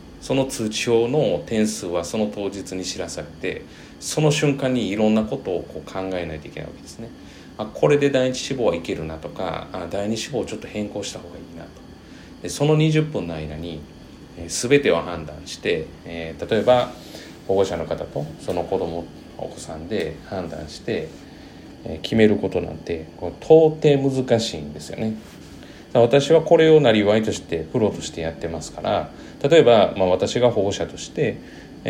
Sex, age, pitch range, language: male, 40-59, 85-135 Hz, Japanese